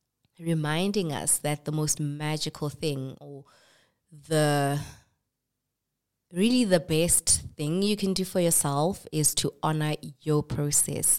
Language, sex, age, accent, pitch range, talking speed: English, female, 20-39, South African, 140-160 Hz, 125 wpm